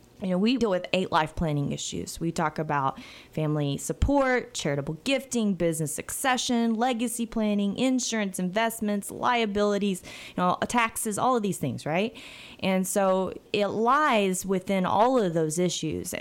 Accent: American